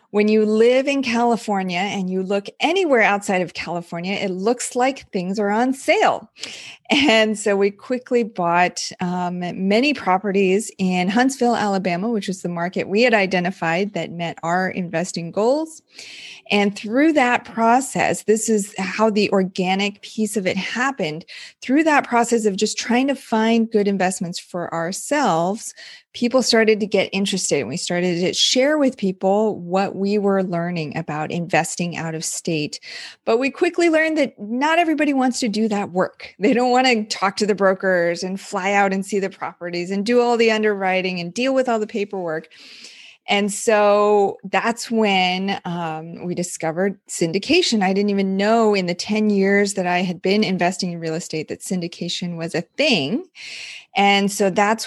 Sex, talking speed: female, 175 wpm